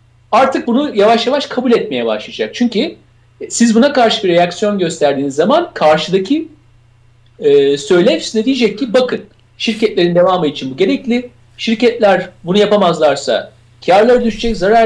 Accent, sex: native, male